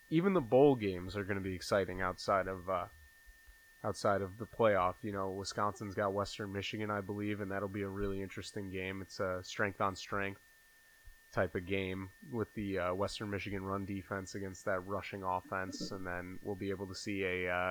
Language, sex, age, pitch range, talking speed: English, male, 20-39, 95-115 Hz, 200 wpm